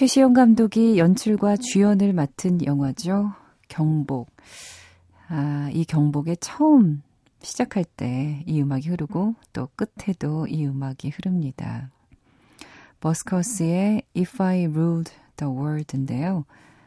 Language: Korean